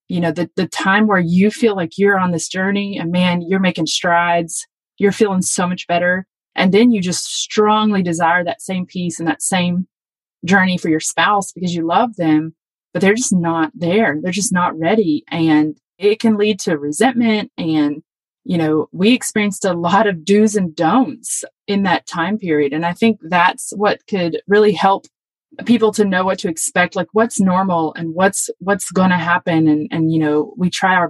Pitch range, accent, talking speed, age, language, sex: 170-205 Hz, American, 200 wpm, 20-39, English, female